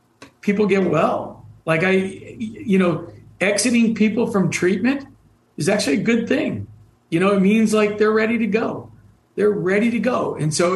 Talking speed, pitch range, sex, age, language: 175 wpm, 140-185 Hz, male, 50-69, English